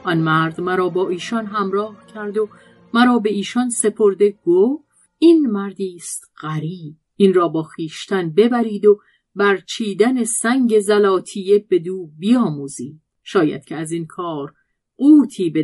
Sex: female